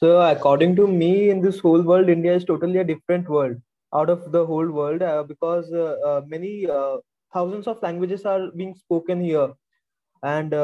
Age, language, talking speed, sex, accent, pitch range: 20-39, English, 165 wpm, male, Indian, 145-175 Hz